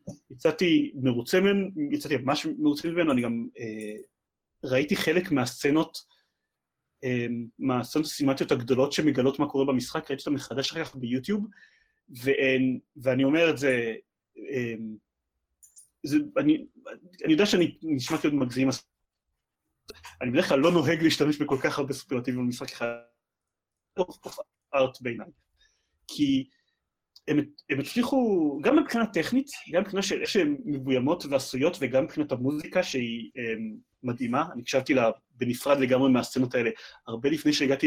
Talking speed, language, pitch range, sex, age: 125 wpm, Hebrew, 130-205 Hz, male, 30-49